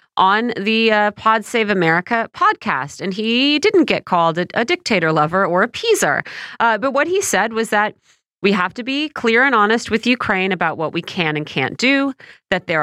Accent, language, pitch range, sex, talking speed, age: American, English, 165-235 Hz, female, 200 wpm, 30-49